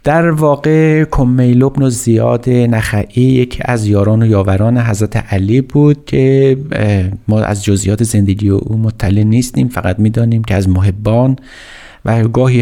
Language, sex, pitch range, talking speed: Persian, male, 100-120 Hz, 140 wpm